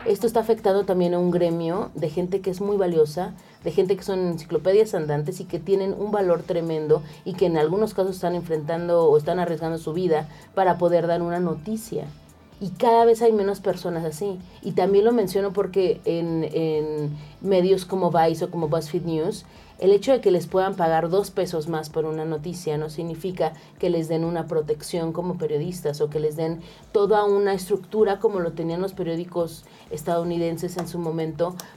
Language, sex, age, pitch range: Spanish, female, 40-59, 160-195 Hz